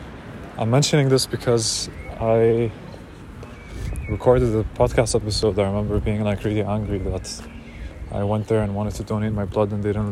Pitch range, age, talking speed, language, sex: 100-115 Hz, 20-39, 165 wpm, English, male